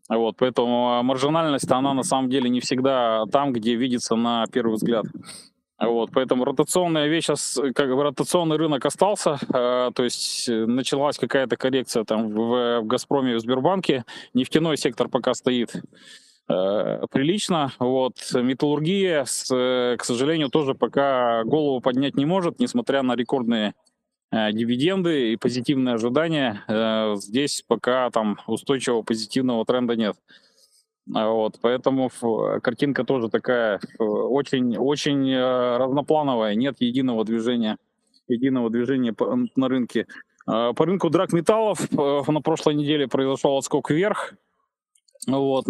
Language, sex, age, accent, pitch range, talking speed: Russian, male, 20-39, native, 120-145 Hz, 115 wpm